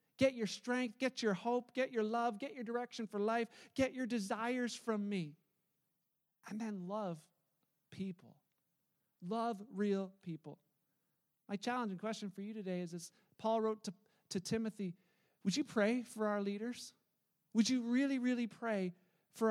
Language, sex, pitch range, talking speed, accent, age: English, male, 180-230 Hz, 160 wpm, American, 40-59